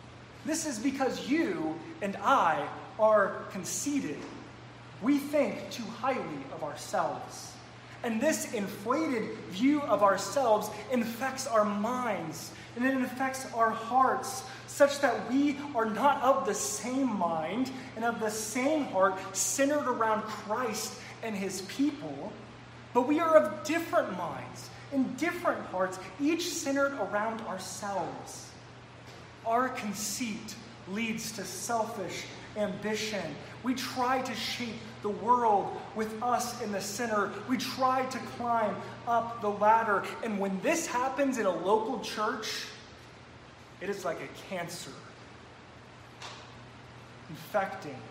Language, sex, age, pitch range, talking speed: English, male, 20-39, 190-260 Hz, 125 wpm